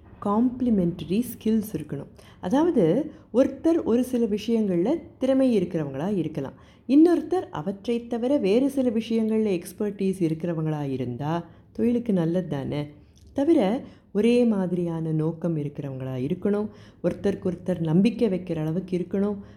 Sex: female